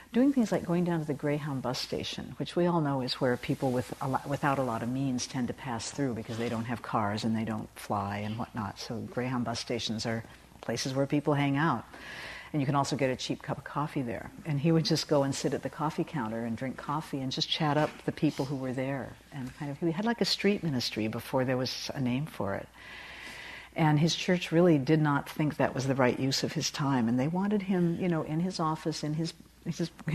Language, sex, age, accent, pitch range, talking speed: English, female, 60-79, American, 135-170 Hz, 255 wpm